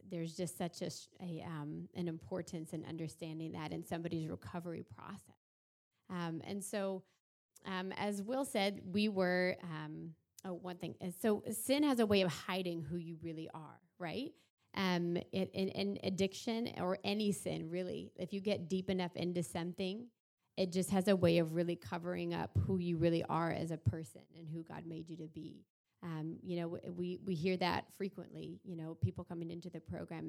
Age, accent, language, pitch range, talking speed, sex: 30-49, American, English, 165-185 Hz, 185 wpm, female